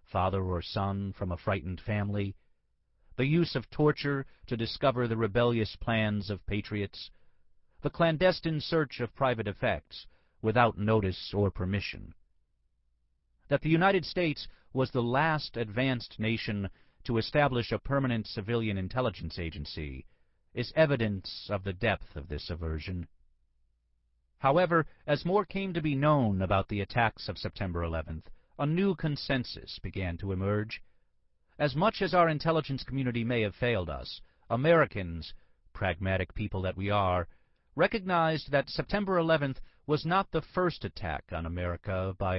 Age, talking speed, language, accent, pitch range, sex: 40-59, 140 wpm, English, American, 95-135 Hz, male